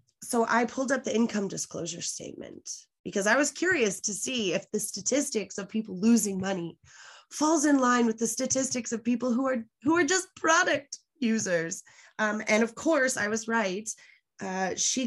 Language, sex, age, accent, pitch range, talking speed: English, female, 20-39, American, 180-235 Hz, 180 wpm